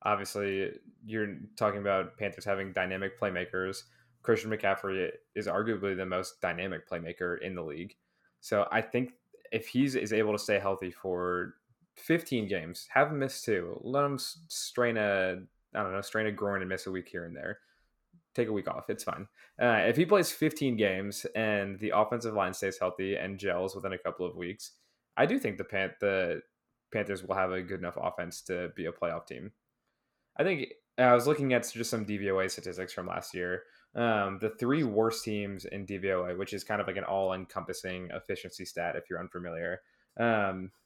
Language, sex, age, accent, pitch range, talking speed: English, male, 20-39, American, 95-115 Hz, 190 wpm